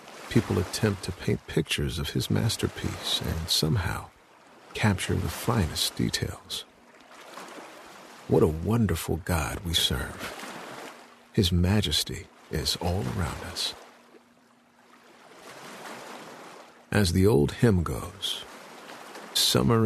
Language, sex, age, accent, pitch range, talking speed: English, male, 50-69, American, 90-105 Hz, 95 wpm